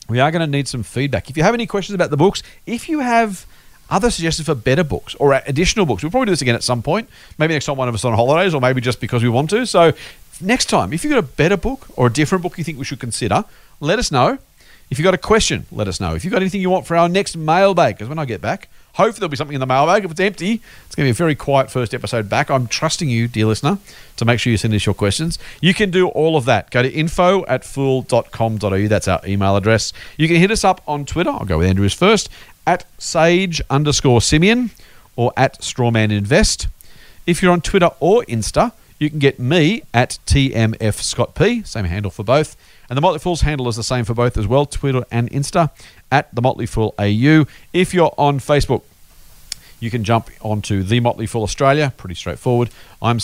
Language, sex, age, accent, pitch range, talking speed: English, male, 40-59, Australian, 115-170 Hz, 240 wpm